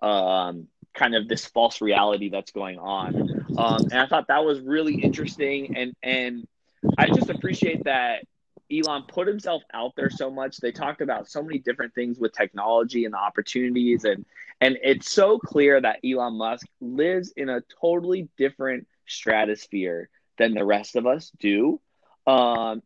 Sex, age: male, 20-39